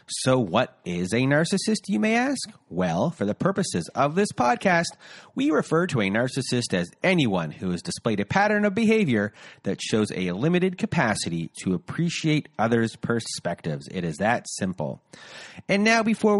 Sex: male